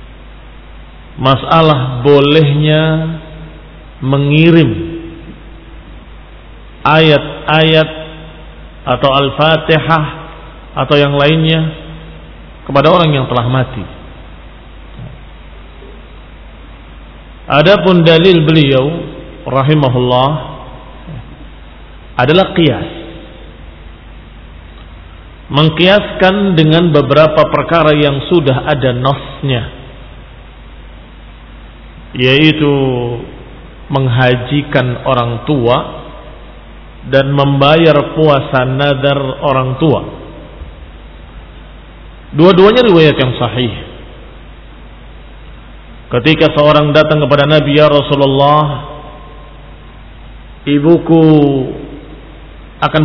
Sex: male